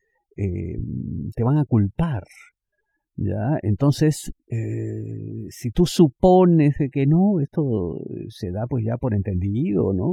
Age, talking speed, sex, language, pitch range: 50-69, 125 wpm, male, Spanish, 100-150 Hz